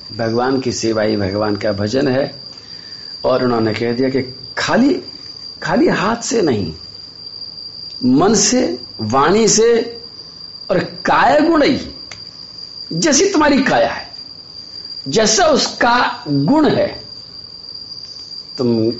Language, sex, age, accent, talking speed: Hindi, male, 50-69, native, 105 wpm